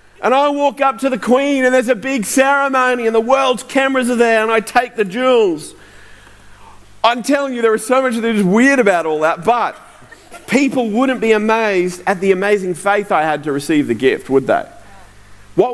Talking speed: 205 wpm